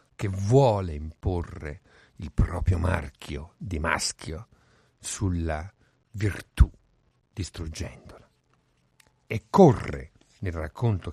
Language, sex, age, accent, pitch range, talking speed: Italian, male, 50-69, native, 90-125 Hz, 80 wpm